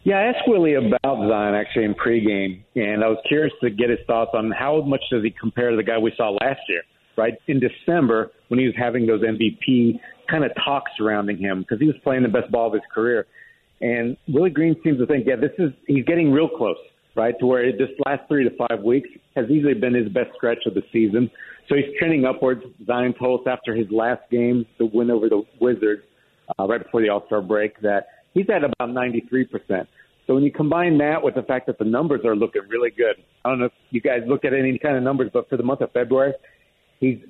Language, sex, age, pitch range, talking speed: English, male, 50-69, 115-140 Hz, 235 wpm